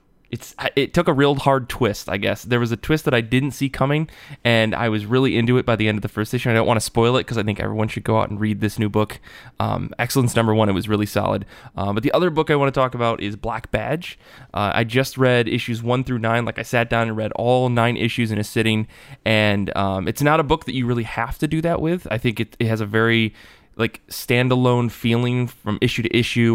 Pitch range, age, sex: 110-125 Hz, 20-39, male